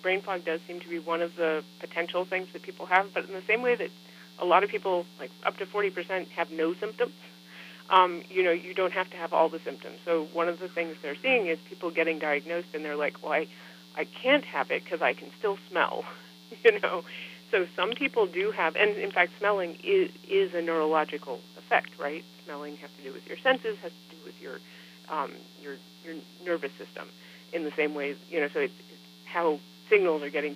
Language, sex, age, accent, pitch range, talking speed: English, female, 40-59, American, 140-180 Hz, 220 wpm